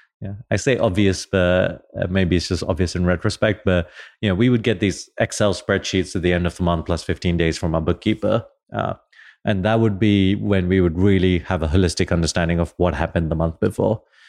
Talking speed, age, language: 215 wpm, 30-49, English